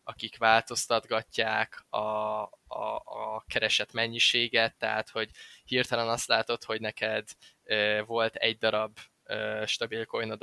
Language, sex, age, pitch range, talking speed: Hungarian, male, 10-29, 110-125 Hz, 110 wpm